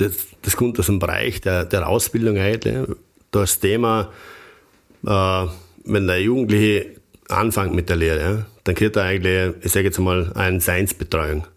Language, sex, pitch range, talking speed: German, male, 90-105 Hz, 145 wpm